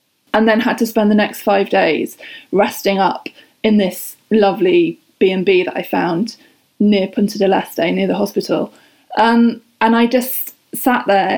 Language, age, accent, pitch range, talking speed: English, 20-39, British, 195-230 Hz, 165 wpm